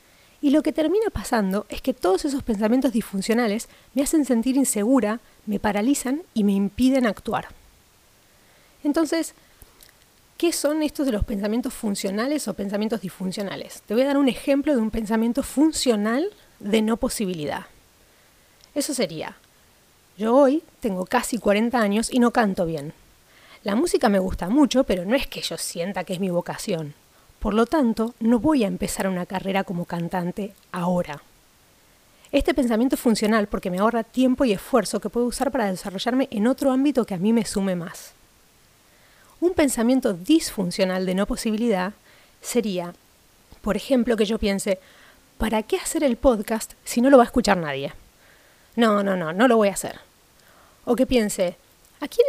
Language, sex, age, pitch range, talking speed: Spanish, female, 30-49, 195-265 Hz, 165 wpm